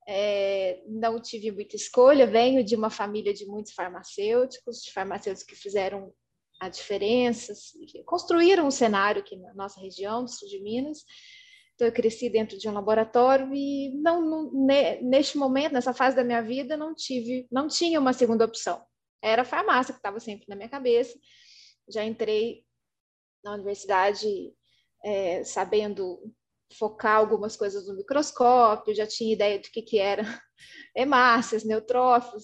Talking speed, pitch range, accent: 155 wpm, 210-270 Hz, Brazilian